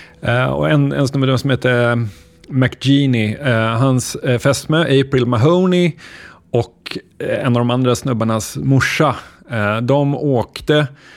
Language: Swedish